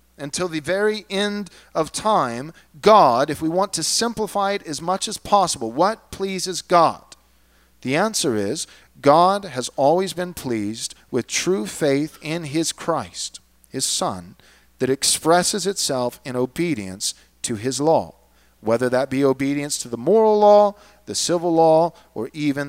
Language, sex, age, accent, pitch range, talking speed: English, male, 40-59, American, 110-185 Hz, 150 wpm